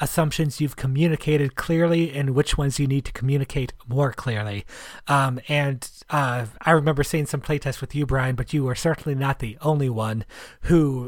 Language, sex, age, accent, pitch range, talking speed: English, male, 30-49, American, 125-150 Hz, 180 wpm